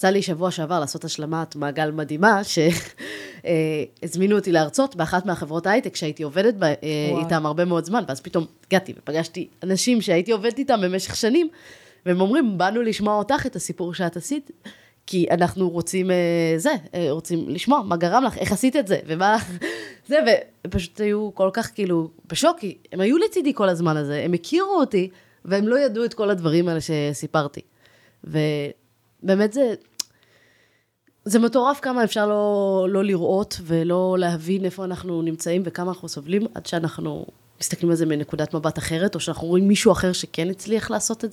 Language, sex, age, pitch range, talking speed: Hebrew, female, 20-39, 165-210 Hz, 160 wpm